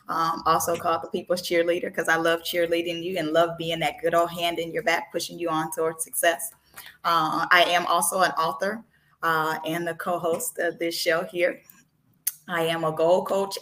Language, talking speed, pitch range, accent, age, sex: English, 200 wpm, 155-185 Hz, American, 20-39, female